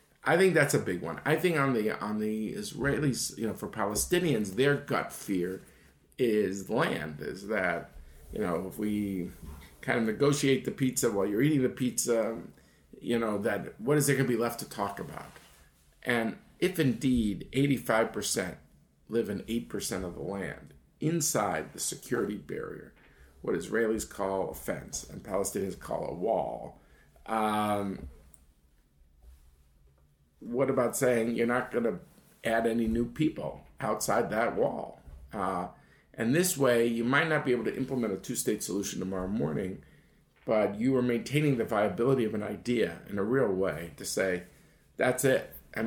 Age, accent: 50-69, American